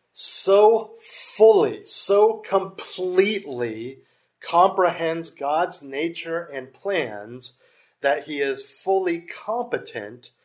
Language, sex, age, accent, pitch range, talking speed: English, male, 40-59, American, 125-180 Hz, 80 wpm